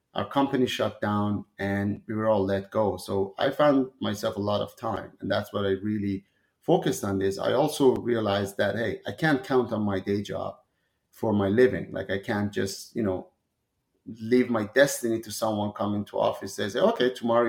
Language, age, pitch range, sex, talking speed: English, 30-49, 100-130 Hz, male, 200 wpm